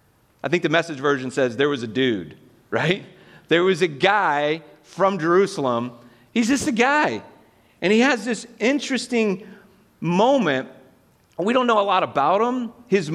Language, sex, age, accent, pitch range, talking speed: English, male, 40-59, American, 115-185 Hz, 160 wpm